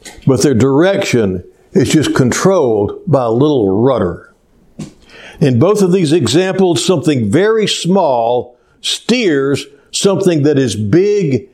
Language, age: English, 60-79